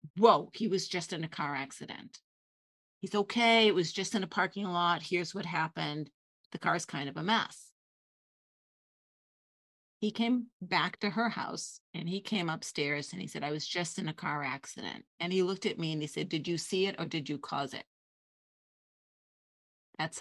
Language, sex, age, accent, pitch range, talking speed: English, female, 40-59, American, 160-200 Hz, 195 wpm